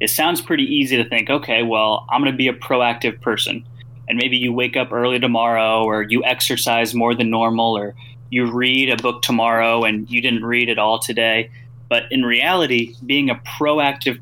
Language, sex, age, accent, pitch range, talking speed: English, male, 10-29, American, 115-125 Hz, 200 wpm